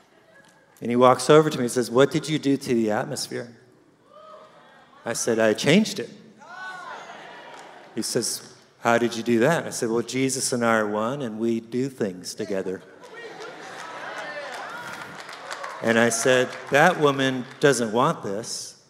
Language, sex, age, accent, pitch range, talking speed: English, male, 50-69, American, 110-135 Hz, 150 wpm